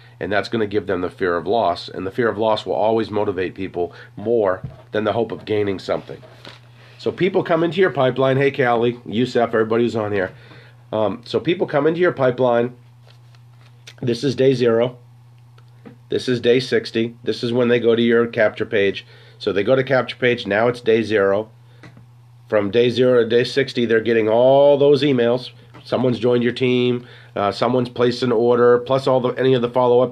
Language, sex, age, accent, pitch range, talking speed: English, male, 40-59, American, 110-125 Hz, 200 wpm